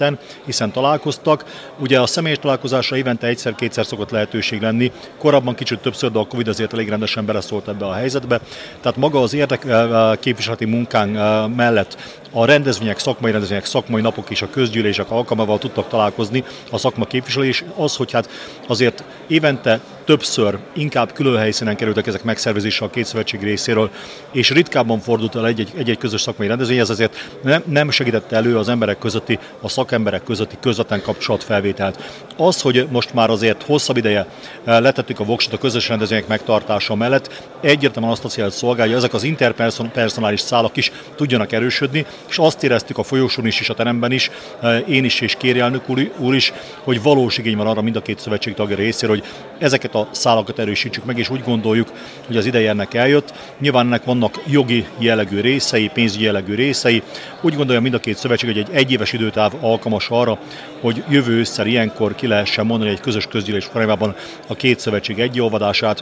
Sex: male